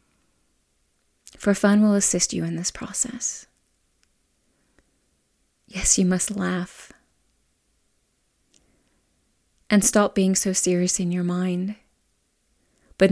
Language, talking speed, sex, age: English, 95 wpm, female, 30-49